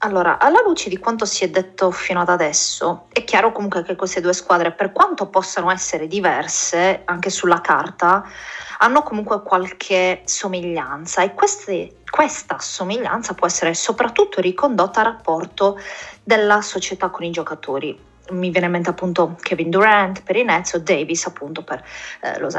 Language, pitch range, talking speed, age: Italian, 175-210 Hz, 160 wpm, 30-49